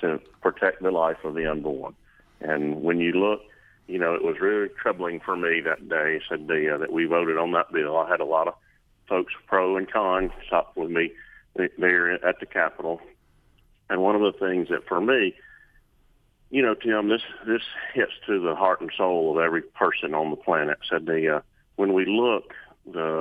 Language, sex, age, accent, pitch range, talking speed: English, male, 40-59, American, 85-100 Hz, 200 wpm